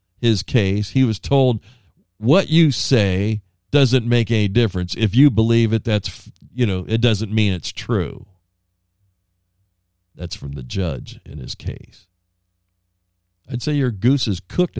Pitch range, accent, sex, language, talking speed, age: 90-125 Hz, American, male, English, 150 wpm, 50-69